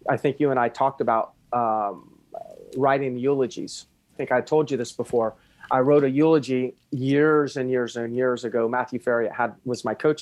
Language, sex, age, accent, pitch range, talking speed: English, male, 40-59, American, 115-145 Hz, 195 wpm